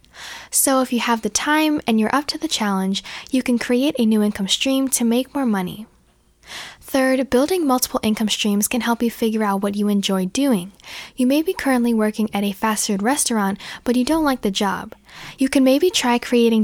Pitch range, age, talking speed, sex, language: 210-270 Hz, 10-29, 210 wpm, female, English